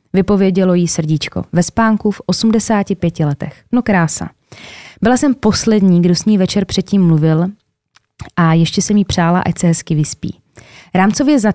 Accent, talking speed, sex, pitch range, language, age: native, 155 wpm, female, 165-220 Hz, Czech, 20-39